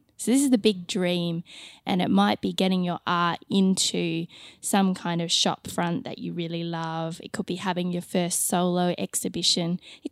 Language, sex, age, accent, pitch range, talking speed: English, female, 10-29, Australian, 175-210 Hz, 185 wpm